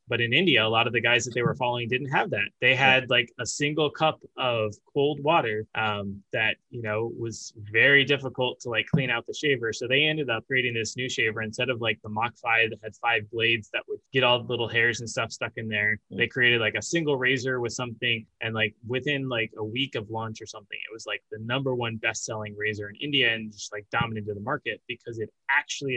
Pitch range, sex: 110-130 Hz, male